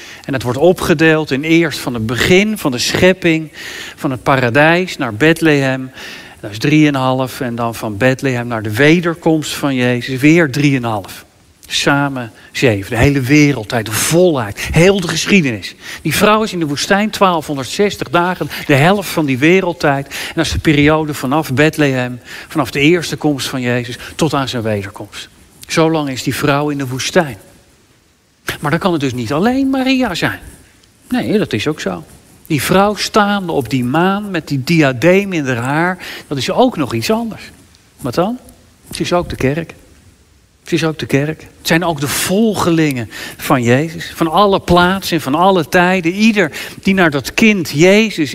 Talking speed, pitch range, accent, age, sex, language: 175 wpm, 130-180 Hz, Dutch, 50-69, male, Dutch